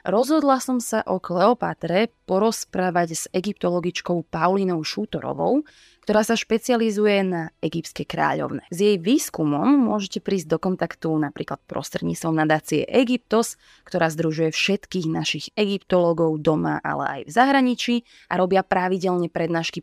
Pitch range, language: 170-225 Hz, Slovak